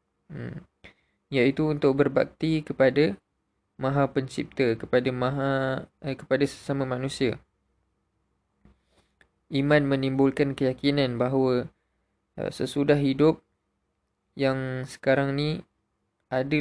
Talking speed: 85 wpm